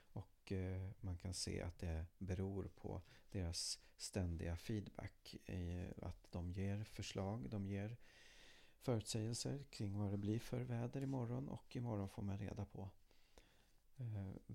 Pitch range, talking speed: 90-110 Hz, 140 wpm